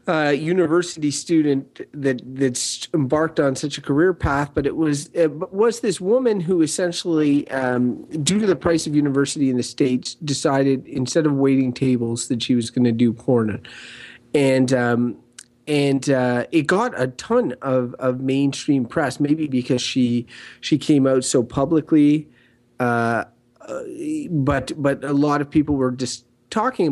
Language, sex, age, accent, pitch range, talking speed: English, male, 30-49, American, 130-160 Hz, 165 wpm